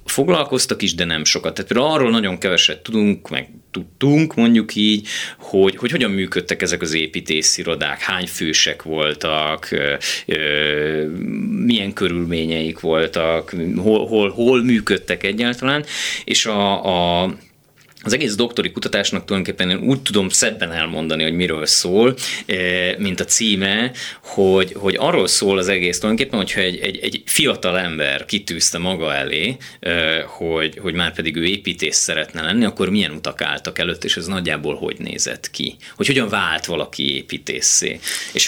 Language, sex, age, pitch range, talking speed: Hungarian, male, 30-49, 80-110 Hz, 145 wpm